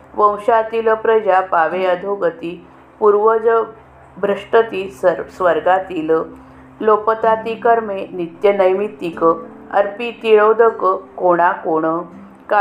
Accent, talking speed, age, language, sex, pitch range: native, 55 wpm, 50-69, Marathi, female, 175-220 Hz